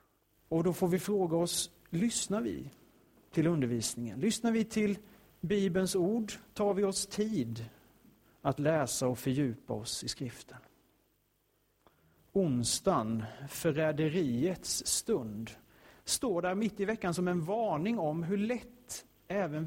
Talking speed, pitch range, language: 125 wpm, 115-180 Hz, Swedish